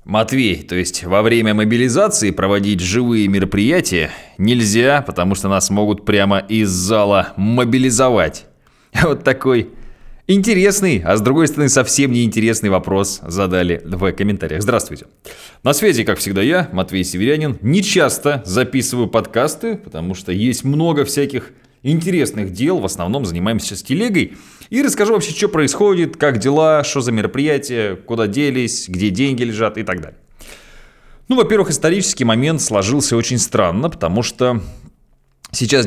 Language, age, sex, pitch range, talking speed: Russian, 20-39, male, 95-130 Hz, 140 wpm